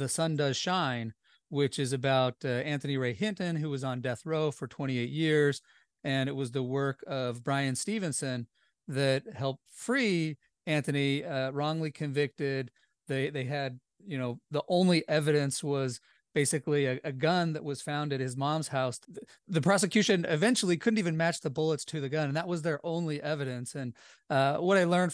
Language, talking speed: English, 180 wpm